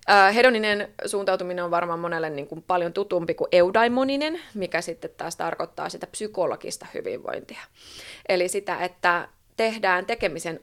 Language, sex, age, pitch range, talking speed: Finnish, female, 20-39, 170-205 Hz, 130 wpm